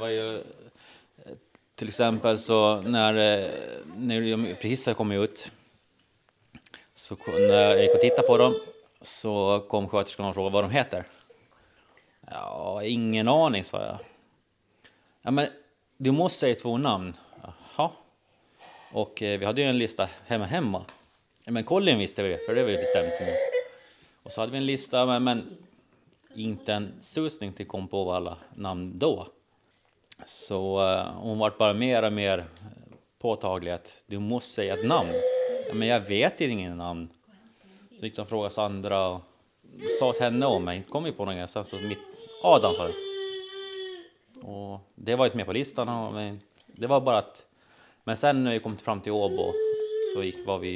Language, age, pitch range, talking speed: Swedish, 30-49, 100-155 Hz, 155 wpm